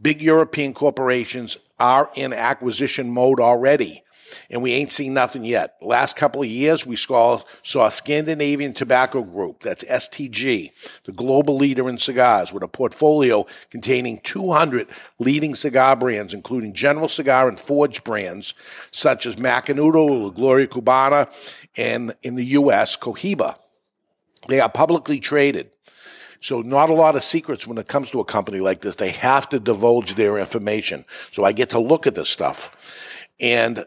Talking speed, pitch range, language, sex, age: 160 wpm, 120-145 Hz, English, male, 50-69